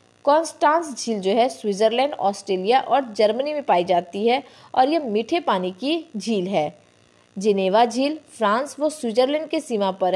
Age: 20-39